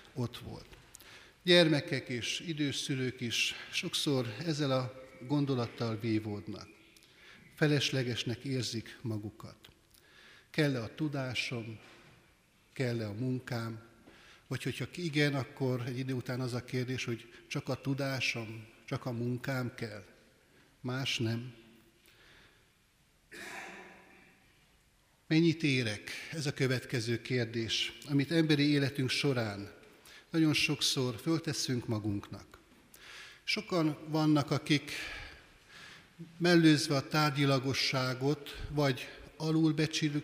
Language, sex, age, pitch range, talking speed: Hungarian, male, 60-79, 120-150 Hz, 90 wpm